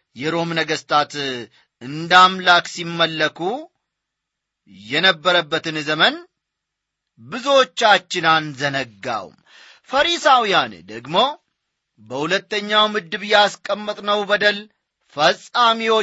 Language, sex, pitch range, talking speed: English, male, 155-210 Hz, 85 wpm